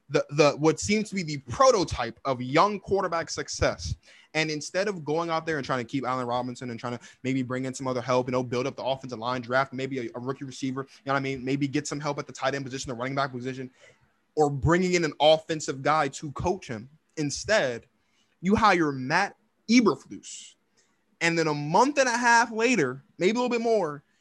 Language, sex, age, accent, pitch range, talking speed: English, male, 20-39, American, 135-195 Hz, 225 wpm